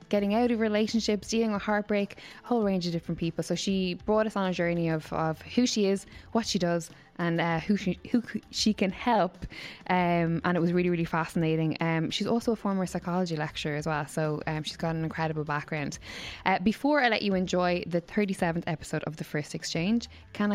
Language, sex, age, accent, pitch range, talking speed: English, female, 10-29, Irish, 165-210 Hz, 215 wpm